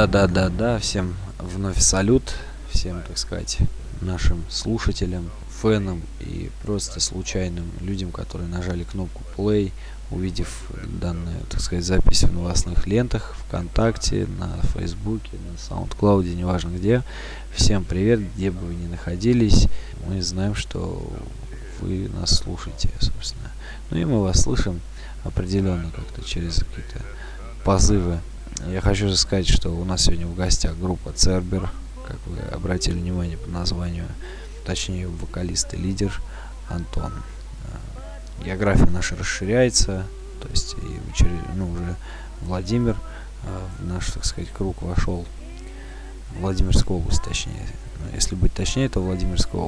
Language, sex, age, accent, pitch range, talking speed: Russian, male, 20-39, native, 85-105 Hz, 130 wpm